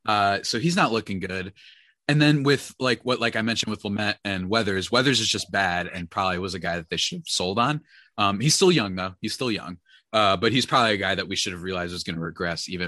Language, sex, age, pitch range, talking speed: English, male, 20-39, 95-125 Hz, 260 wpm